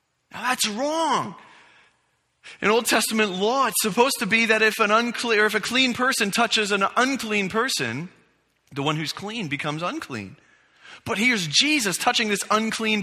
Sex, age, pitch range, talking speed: male, 30-49, 165-225 Hz, 150 wpm